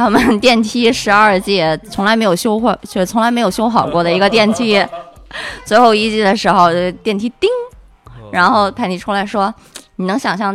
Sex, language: female, Chinese